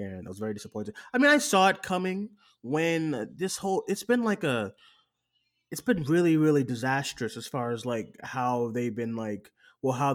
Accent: American